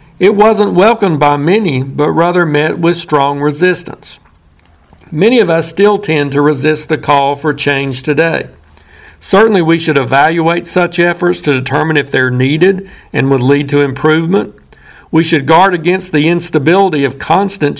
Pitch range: 140-175 Hz